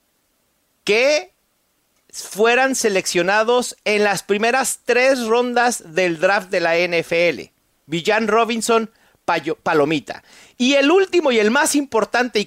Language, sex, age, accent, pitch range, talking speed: Spanish, male, 40-59, Mexican, 175-240 Hz, 115 wpm